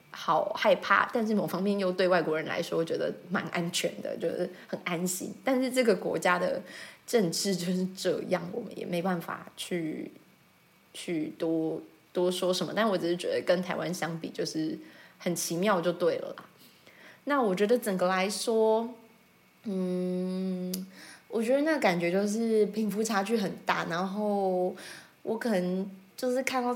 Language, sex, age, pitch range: Chinese, female, 20-39, 170-220 Hz